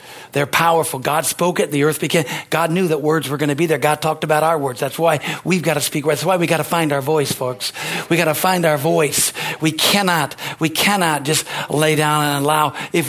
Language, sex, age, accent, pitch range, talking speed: English, male, 60-79, American, 150-185 Hz, 245 wpm